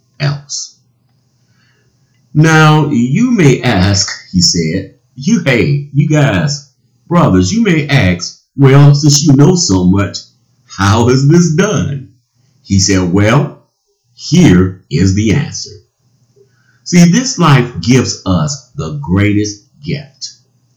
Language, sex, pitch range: English, male, 105-145 Hz